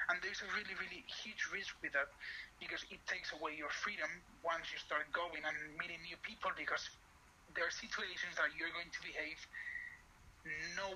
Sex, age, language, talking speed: male, 30-49, English, 180 wpm